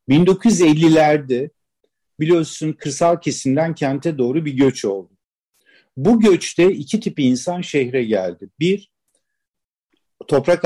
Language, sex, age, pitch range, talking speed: Turkish, male, 50-69, 135-185 Hz, 100 wpm